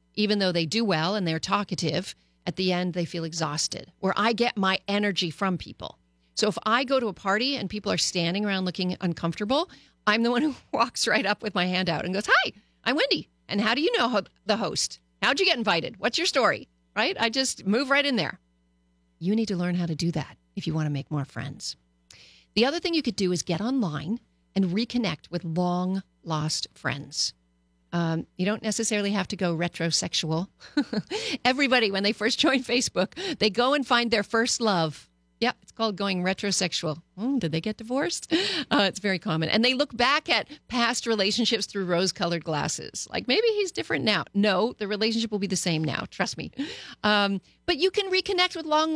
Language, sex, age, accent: English, female, 40-59, American